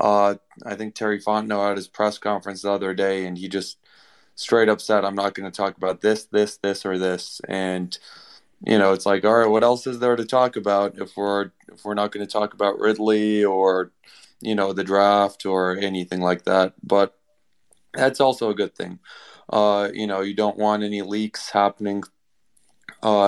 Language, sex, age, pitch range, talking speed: English, male, 20-39, 95-105 Hz, 200 wpm